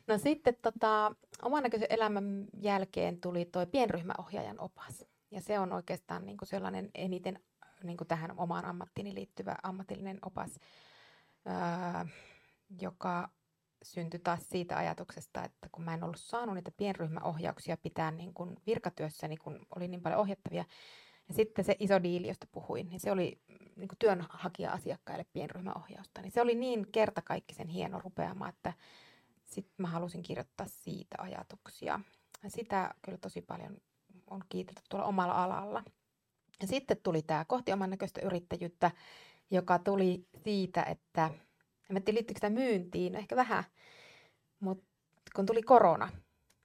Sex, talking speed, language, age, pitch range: female, 140 wpm, Finnish, 30-49, 170-200 Hz